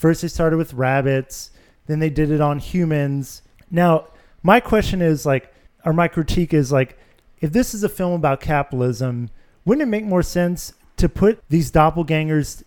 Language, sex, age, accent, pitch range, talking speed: English, male, 30-49, American, 145-175 Hz, 175 wpm